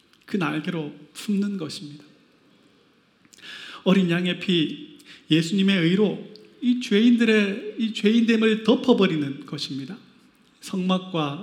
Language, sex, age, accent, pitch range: Korean, male, 30-49, native, 160-205 Hz